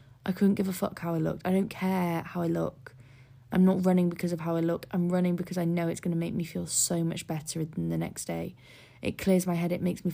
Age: 20-39